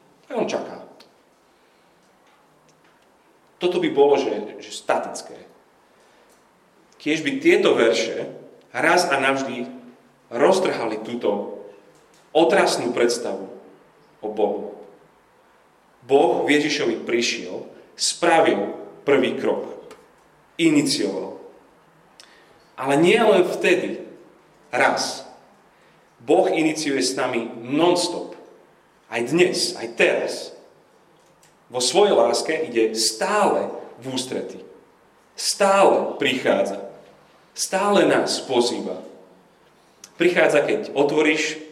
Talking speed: 80 wpm